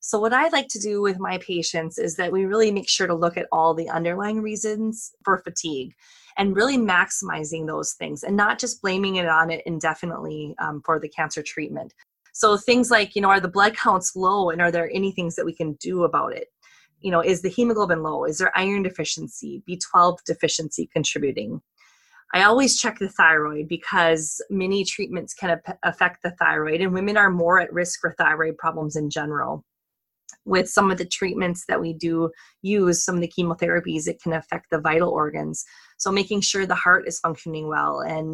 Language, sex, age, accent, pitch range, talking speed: English, female, 20-39, American, 165-195 Hz, 200 wpm